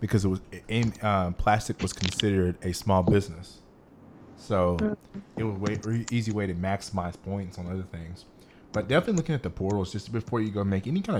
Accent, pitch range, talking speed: American, 95-110 Hz, 190 wpm